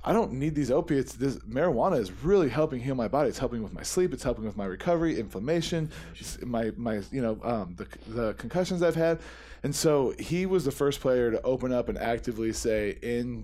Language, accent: English, American